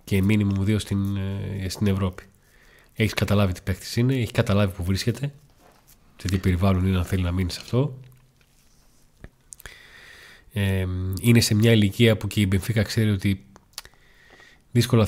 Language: Greek